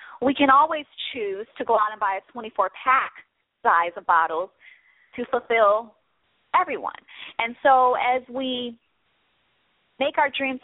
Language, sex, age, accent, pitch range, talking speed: English, female, 30-49, American, 220-275 Hz, 135 wpm